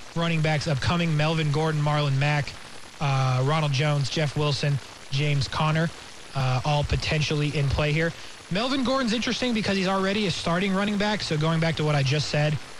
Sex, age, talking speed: male, 20-39, 180 wpm